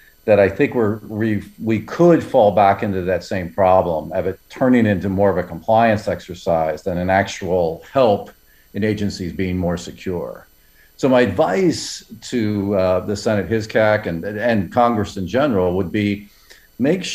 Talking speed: 165 wpm